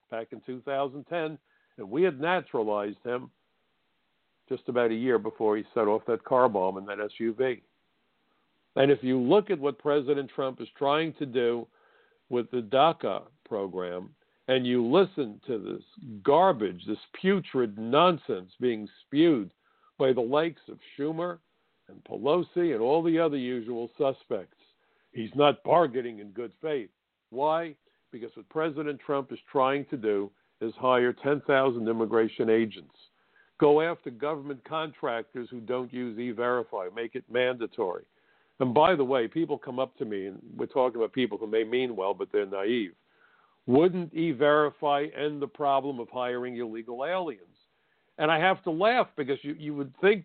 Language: English